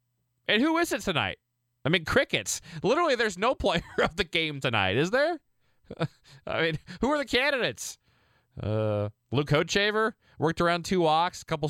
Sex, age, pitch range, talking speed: male, 30-49, 110-160 Hz, 170 wpm